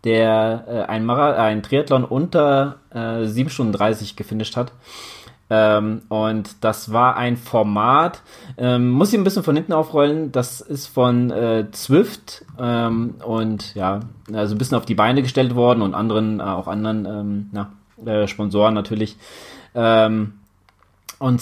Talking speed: 155 wpm